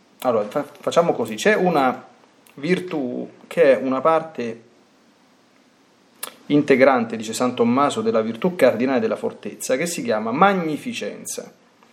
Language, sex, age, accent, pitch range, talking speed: Italian, male, 30-49, native, 140-205 Hz, 115 wpm